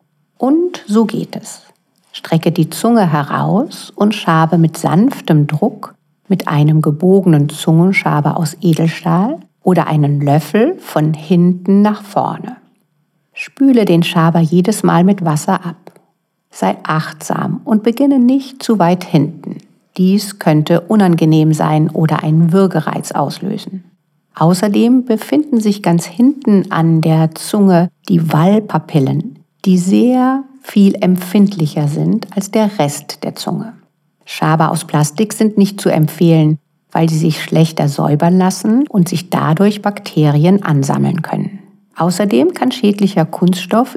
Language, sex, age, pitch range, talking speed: German, female, 50-69, 160-205 Hz, 125 wpm